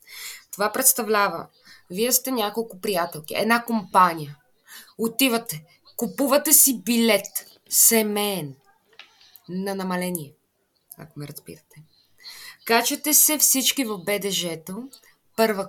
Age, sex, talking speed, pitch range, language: 20-39, female, 90 wpm, 185-245 Hz, Bulgarian